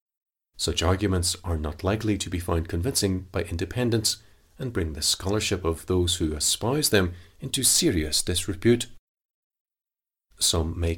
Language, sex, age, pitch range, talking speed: English, male, 40-59, 85-110 Hz, 135 wpm